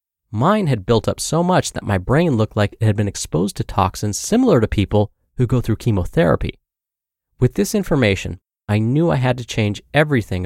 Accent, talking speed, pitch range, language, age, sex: American, 195 wpm, 100-135 Hz, English, 20-39, male